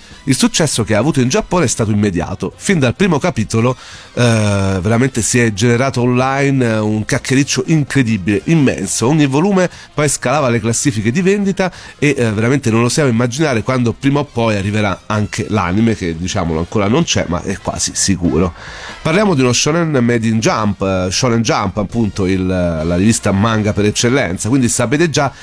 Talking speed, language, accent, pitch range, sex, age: 175 wpm, Italian, native, 105-140 Hz, male, 40-59